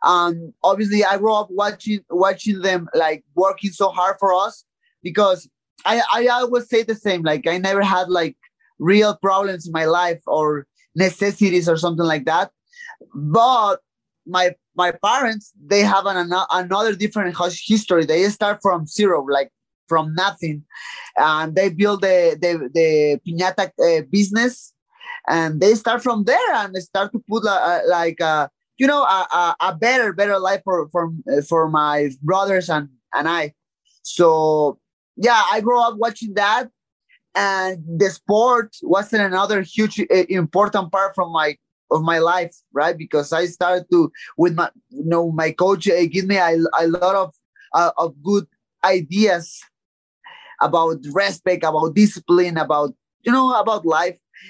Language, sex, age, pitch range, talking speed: English, male, 20-39, 170-210 Hz, 160 wpm